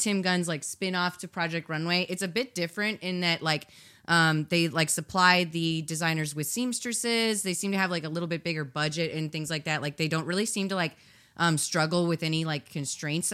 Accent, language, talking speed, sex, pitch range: American, English, 220 wpm, female, 150-175 Hz